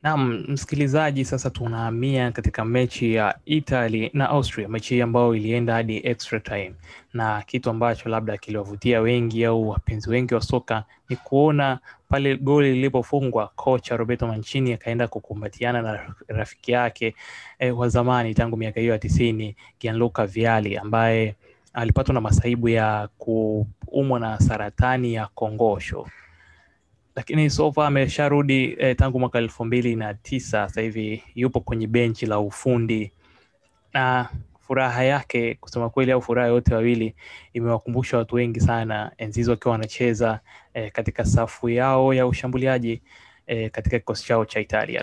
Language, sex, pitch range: Swahili, male, 110-130 Hz